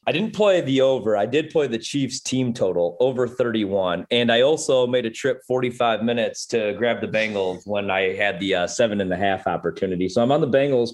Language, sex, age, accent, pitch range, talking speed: English, male, 30-49, American, 110-135 Hz, 225 wpm